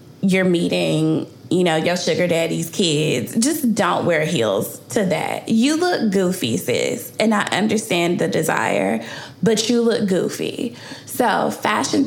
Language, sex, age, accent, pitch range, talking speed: English, female, 20-39, American, 170-230 Hz, 145 wpm